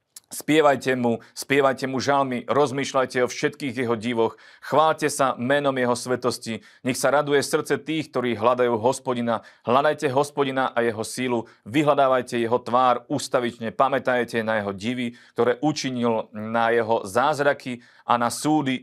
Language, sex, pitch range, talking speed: Slovak, male, 115-135 Hz, 140 wpm